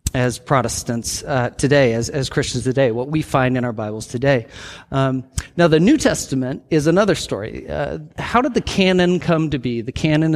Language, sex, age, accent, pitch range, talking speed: English, male, 40-59, American, 125-165 Hz, 190 wpm